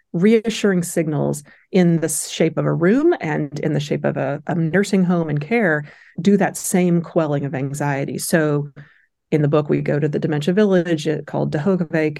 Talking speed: 185 wpm